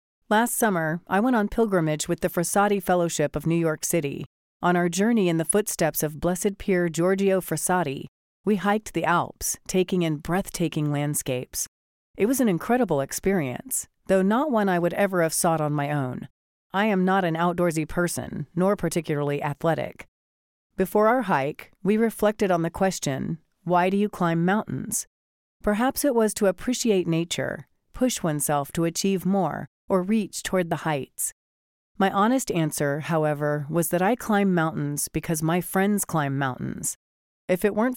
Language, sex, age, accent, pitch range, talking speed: English, female, 40-59, American, 155-200 Hz, 165 wpm